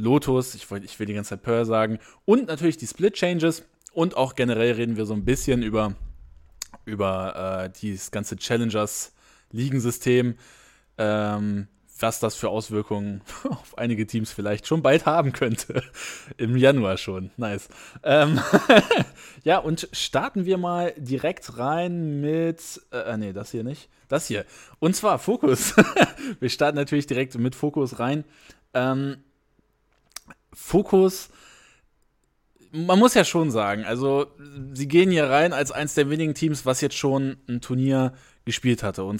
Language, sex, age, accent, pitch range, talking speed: German, male, 20-39, German, 110-150 Hz, 145 wpm